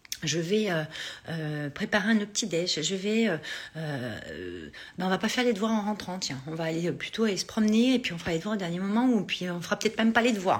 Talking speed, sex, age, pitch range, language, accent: 260 wpm, female, 40-59, 165-230 Hz, French, French